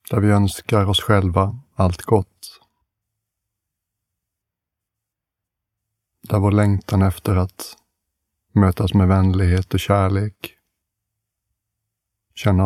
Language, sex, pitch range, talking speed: Swedish, male, 95-105 Hz, 85 wpm